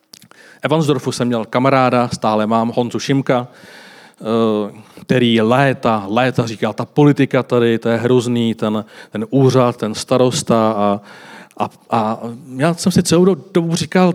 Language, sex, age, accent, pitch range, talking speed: Czech, male, 40-59, native, 120-155 Hz, 140 wpm